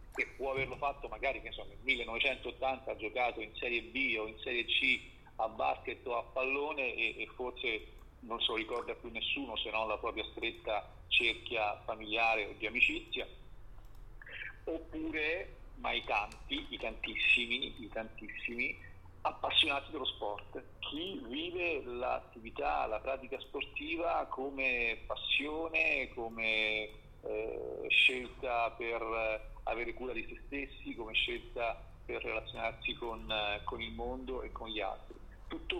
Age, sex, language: 50-69, male, Italian